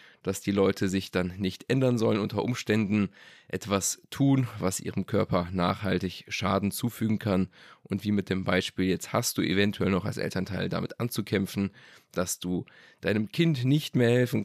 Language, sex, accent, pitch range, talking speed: German, male, German, 100-120 Hz, 165 wpm